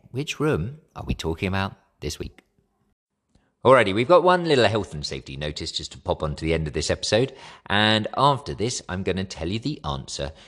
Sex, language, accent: male, English, British